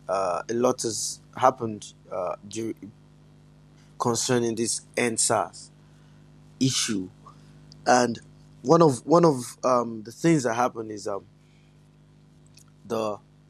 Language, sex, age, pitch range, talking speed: English, male, 20-39, 110-125 Hz, 100 wpm